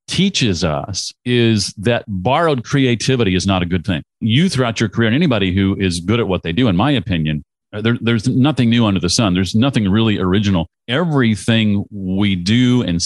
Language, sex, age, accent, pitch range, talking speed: English, male, 40-59, American, 95-125 Hz, 190 wpm